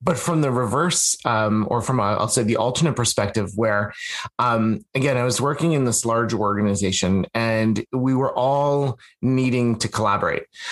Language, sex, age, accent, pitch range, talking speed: English, male, 30-49, American, 110-140 Hz, 170 wpm